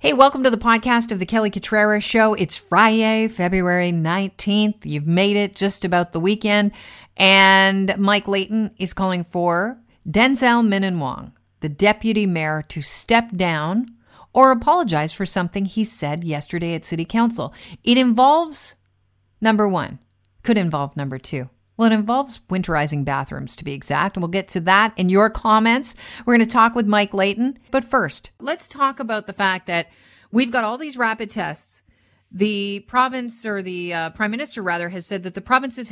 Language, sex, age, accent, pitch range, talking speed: English, female, 50-69, American, 170-220 Hz, 175 wpm